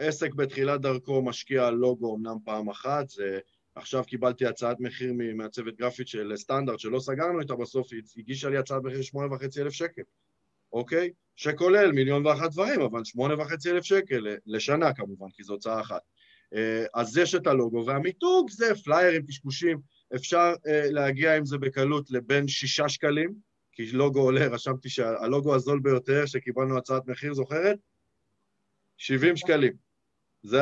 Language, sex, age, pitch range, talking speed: Hebrew, male, 20-39, 125-160 Hz, 145 wpm